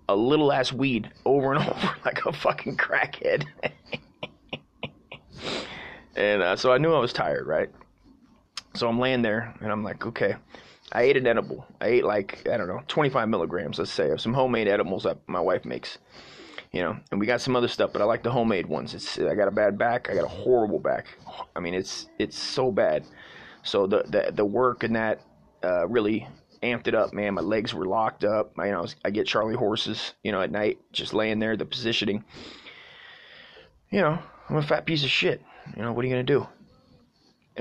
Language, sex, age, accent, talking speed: English, male, 30-49, American, 210 wpm